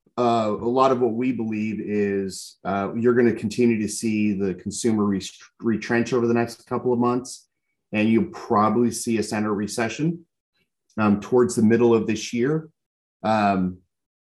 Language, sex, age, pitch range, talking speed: English, male, 30-49, 100-120 Hz, 170 wpm